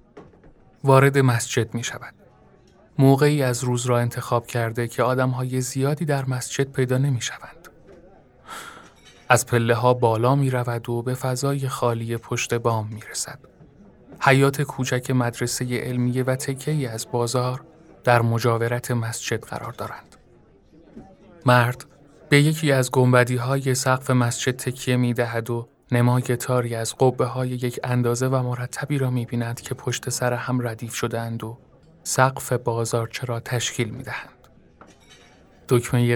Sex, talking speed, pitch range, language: male, 130 wpm, 120-135 Hz, Persian